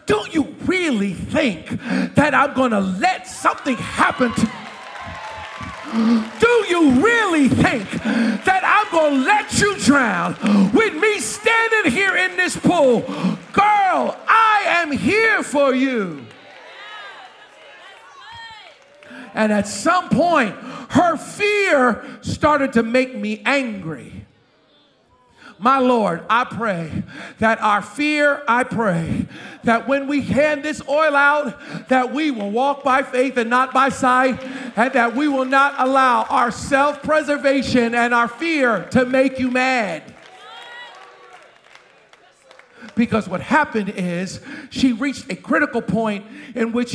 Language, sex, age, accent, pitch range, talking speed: English, male, 50-69, American, 230-295 Hz, 130 wpm